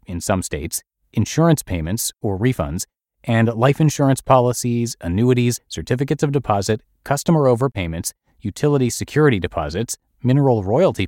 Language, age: English, 30-49